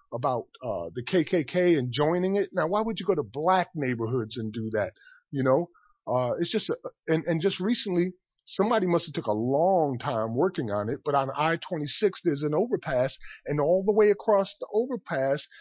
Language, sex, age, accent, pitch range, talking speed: English, male, 40-59, American, 140-200 Hz, 190 wpm